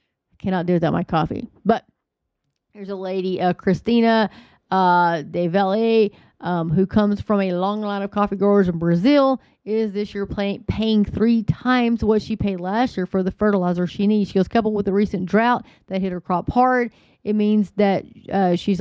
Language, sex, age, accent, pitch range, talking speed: English, female, 30-49, American, 180-215 Hz, 195 wpm